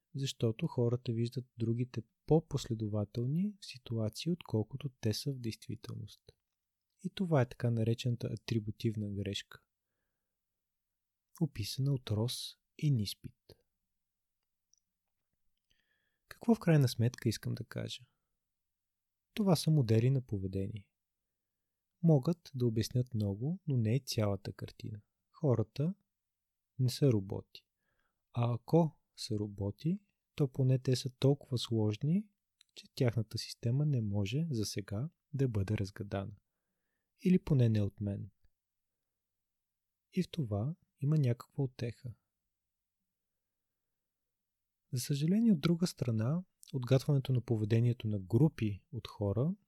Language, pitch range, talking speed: Bulgarian, 100-135 Hz, 110 wpm